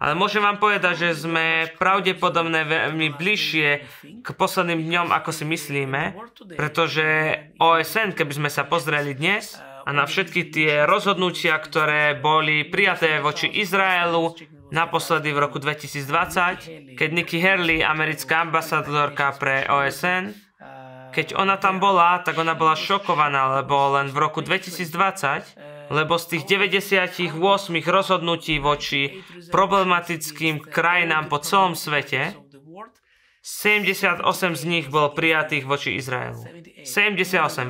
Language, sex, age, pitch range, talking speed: Slovak, male, 20-39, 150-185 Hz, 120 wpm